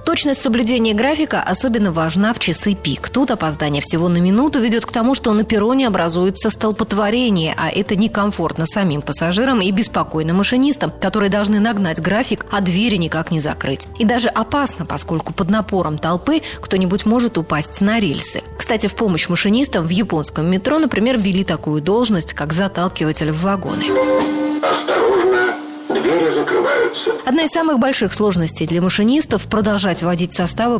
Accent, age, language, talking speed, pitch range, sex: native, 20-39, Russian, 145 wpm, 165-230 Hz, female